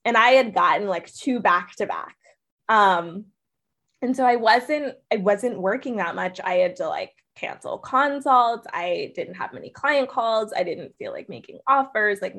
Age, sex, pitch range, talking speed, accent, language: 20-39, female, 185-240 Hz, 185 wpm, American, English